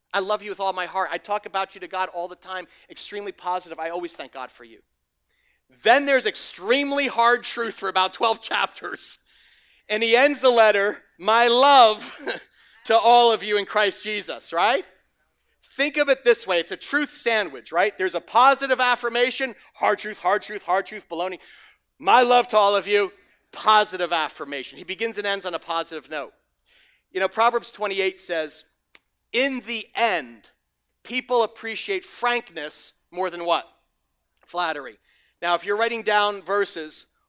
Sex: male